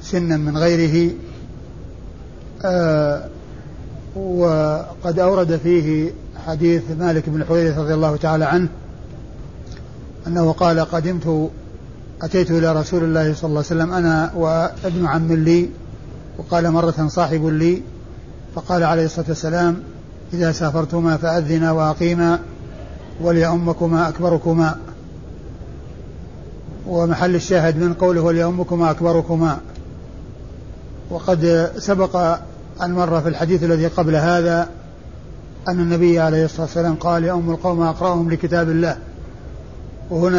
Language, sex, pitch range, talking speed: Arabic, male, 160-175 Hz, 105 wpm